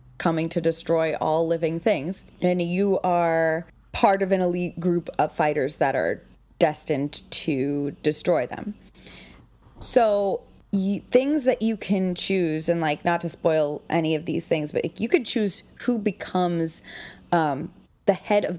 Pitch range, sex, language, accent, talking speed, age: 160-195 Hz, female, English, American, 150 wpm, 20-39